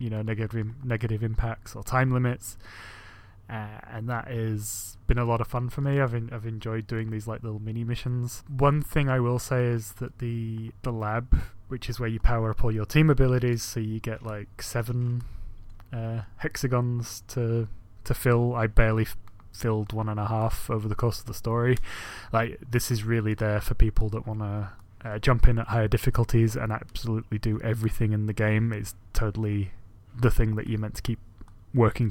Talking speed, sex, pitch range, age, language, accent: 200 wpm, male, 105-125 Hz, 20-39, English, British